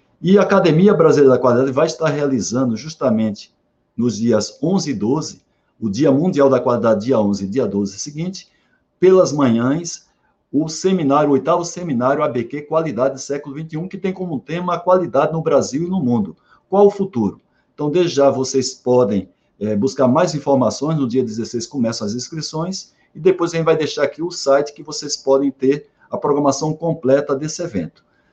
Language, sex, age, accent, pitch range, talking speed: Portuguese, male, 60-79, Brazilian, 115-160 Hz, 180 wpm